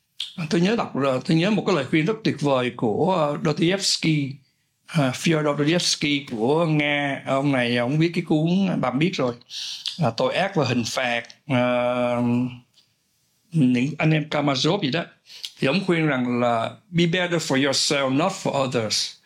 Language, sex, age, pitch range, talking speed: Vietnamese, male, 60-79, 135-180 Hz, 170 wpm